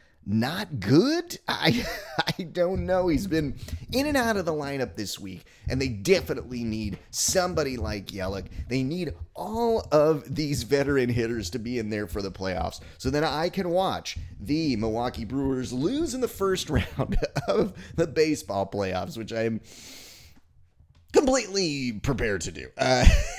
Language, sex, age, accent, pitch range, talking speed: English, male, 30-49, American, 105-175 Hz, 160 wpm